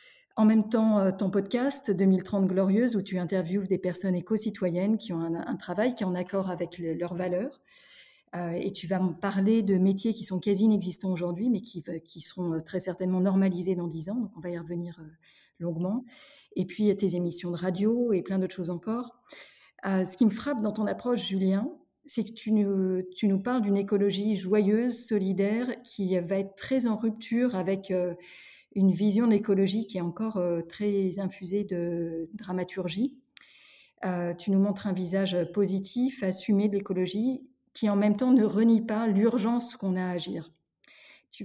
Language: French